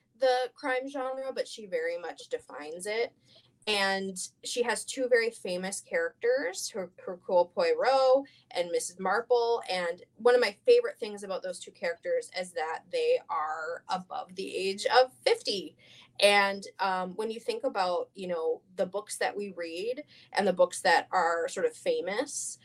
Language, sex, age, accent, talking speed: English, female, 20-39, American, 165 wpm